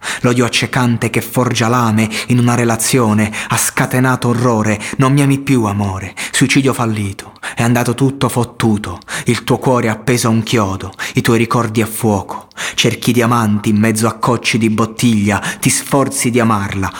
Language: Italian